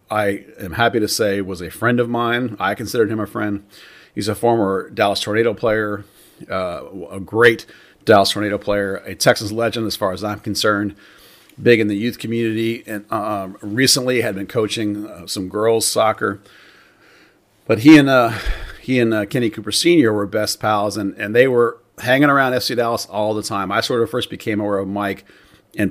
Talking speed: 190 wpm